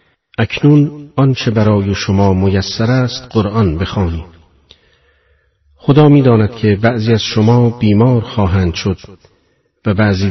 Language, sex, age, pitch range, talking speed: Persian, male, 50-69, 95-115 Hz, 110 wpm